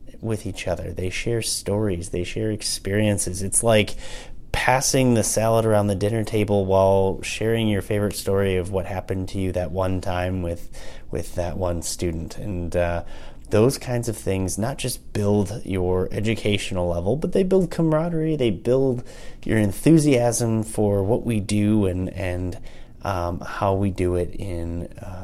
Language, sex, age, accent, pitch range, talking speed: English, male, 30-49, American, 90-115 Hz, 160 wpm